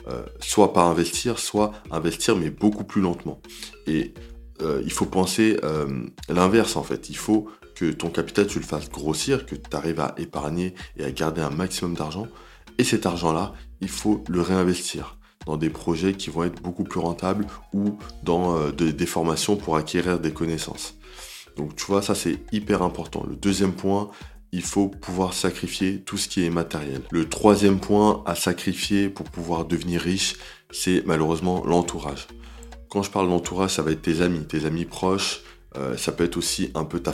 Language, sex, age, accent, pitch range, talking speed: French, male, 20-39, French, 80-95 Hz, 185 wpm